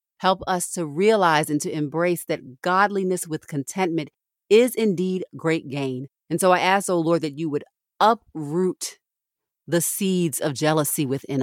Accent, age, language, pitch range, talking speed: American, 40-59, English, 145-185 Hz, 160 wpm